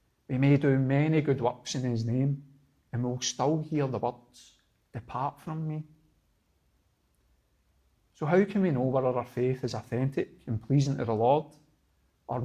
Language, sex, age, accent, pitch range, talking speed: English, male, 40-59, British, 115-140 Hz, 165 wpm